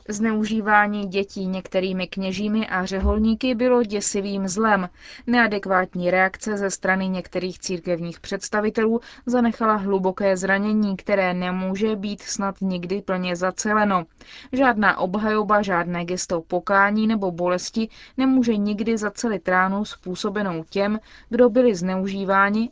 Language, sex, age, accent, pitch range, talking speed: Czech, female, 20-39, native, 185-215 Hz, 110 wpm